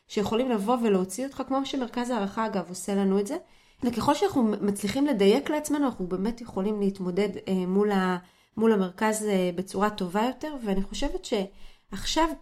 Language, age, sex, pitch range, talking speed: Hebrew, 30-49, female, 195-255 Hz, 140 wpm